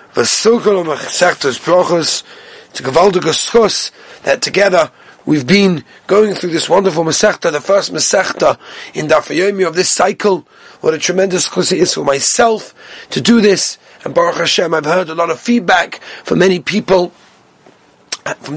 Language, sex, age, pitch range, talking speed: English, male, 30-49, 165-200 Hz, 135 wpm